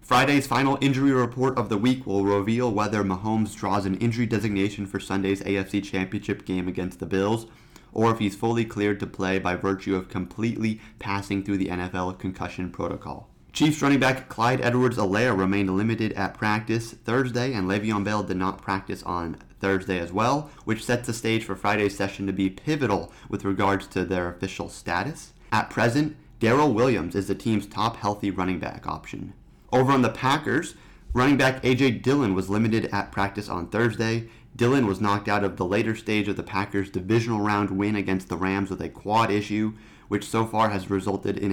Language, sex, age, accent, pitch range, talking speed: English, male, 30-49, American, 95-120 Hz, 185 wpm